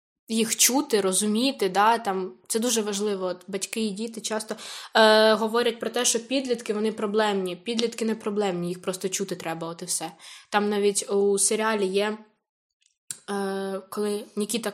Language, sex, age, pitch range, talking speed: Ukrainian, female, 10-29, 200-240 Hz, 140 wpm